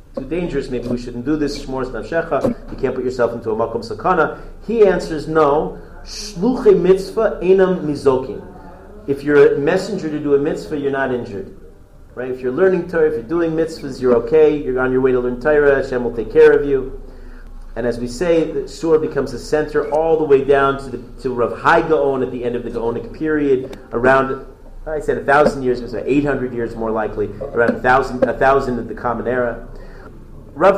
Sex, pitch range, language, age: male, 125-170 Hz, English, 40-59